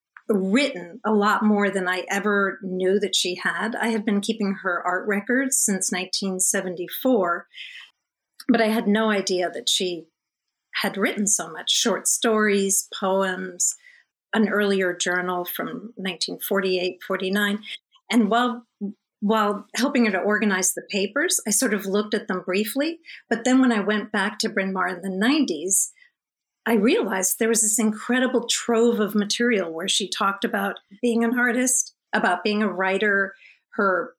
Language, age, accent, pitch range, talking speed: English, 50-69, American, 190-235 Hz, 155 wpm